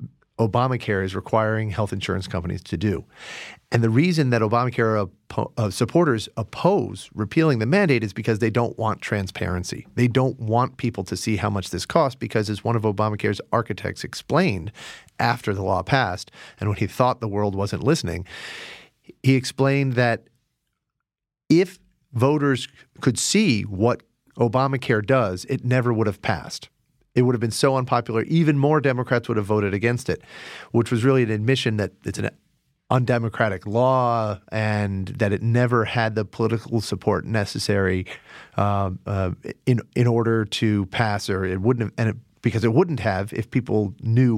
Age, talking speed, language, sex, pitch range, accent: 40-59, 160 wpm, English, male, 100-125 Hz, American